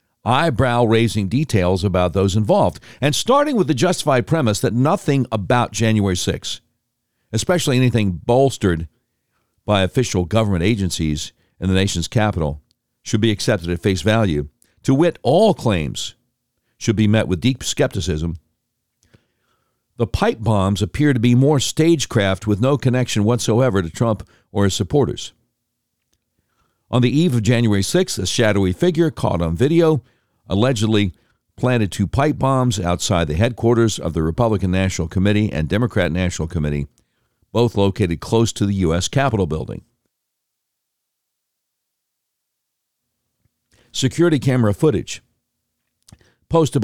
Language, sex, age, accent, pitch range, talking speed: English, male, 60-79, American, 95-125 Hz, 130 wpm